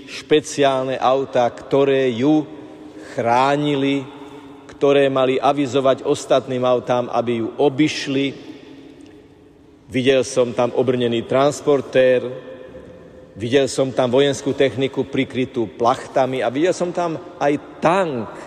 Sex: male